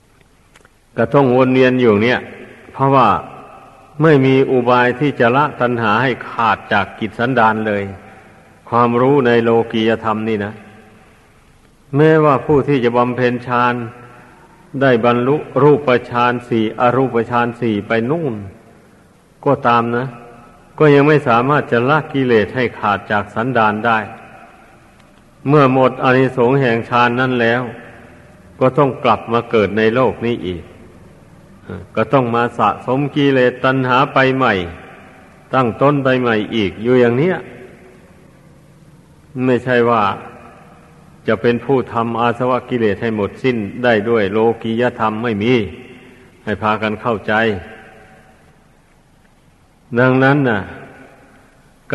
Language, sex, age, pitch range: Thai, male, 60-79, 110-130 Hz